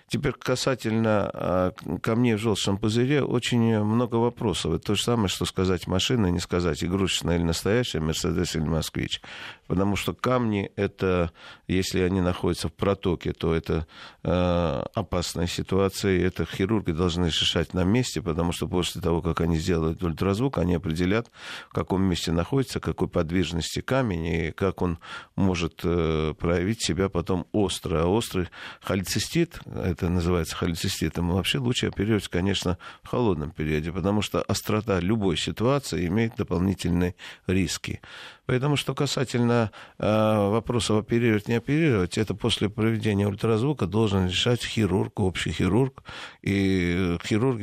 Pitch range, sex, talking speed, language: 85-110 Hz, male, 140 wpm, Russian